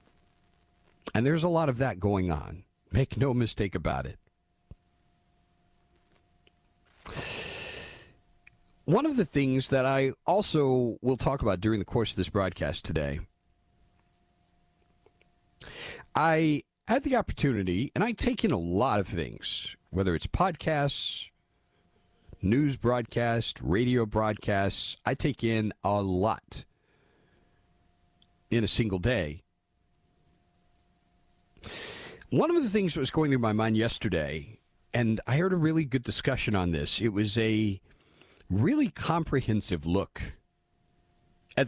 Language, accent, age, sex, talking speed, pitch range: English, American, 40-59, male, 120 wpm, 90-135 Hz